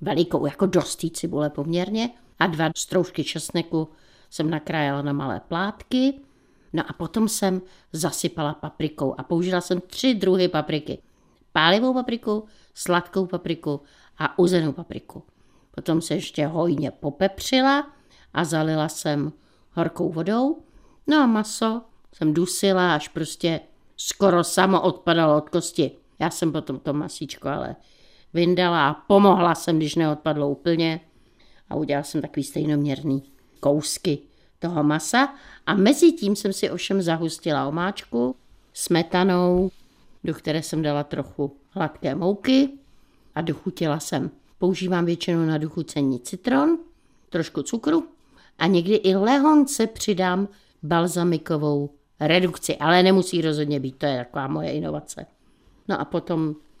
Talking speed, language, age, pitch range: 130 wpm, Czech, 60-79, 155-190 Hz